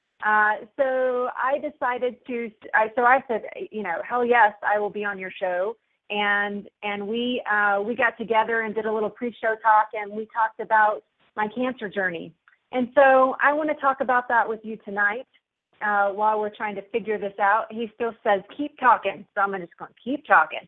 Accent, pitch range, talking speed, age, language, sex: American, 210-245 Hz, 200 wpm, 30-49, English, female